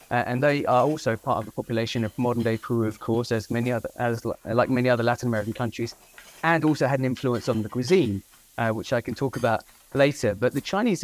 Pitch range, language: 115-140 Hz, English